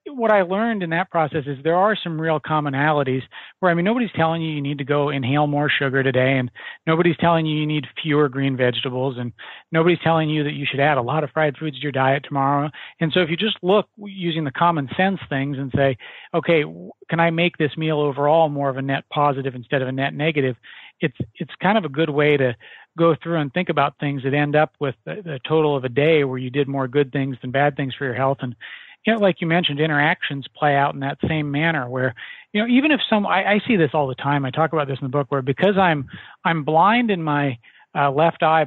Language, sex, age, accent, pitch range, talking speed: English, male, 40-59, American, 135-165 Hz, 250 wpm